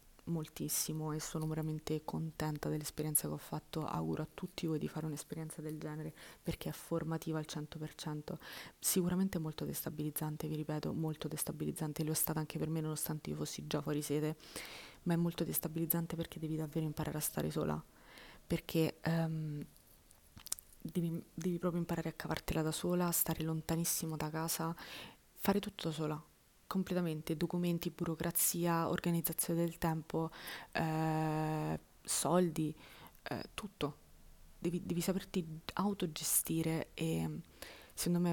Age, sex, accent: 20-39, female, native